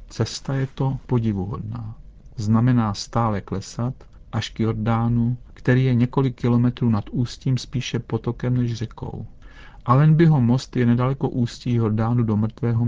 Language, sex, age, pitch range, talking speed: Czech, male, 40-59, 105-125 Hz, 135 wpm